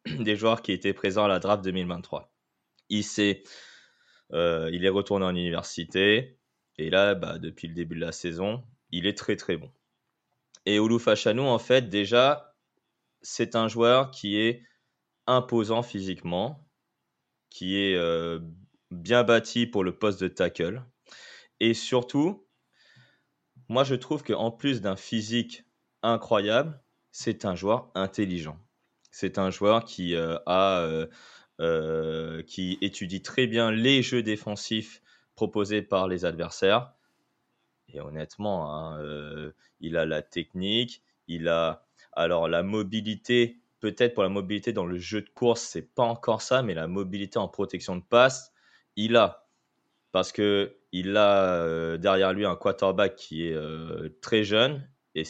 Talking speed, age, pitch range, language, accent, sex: 150 wpm, 20-39, 90-115 Hz, French, French, male